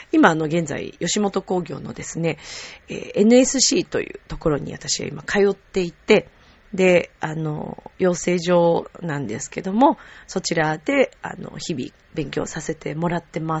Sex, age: female, 30-49